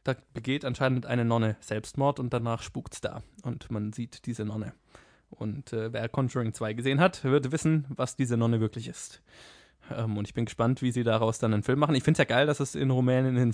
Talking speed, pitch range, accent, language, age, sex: 220 wpm, 115-140 Hz, German, German, 20-39, male